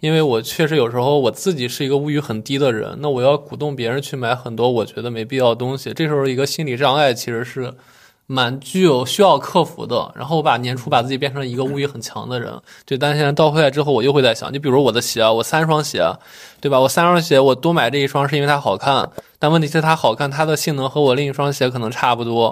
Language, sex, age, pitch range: Chinese, male, 20-39, 130-160 Hz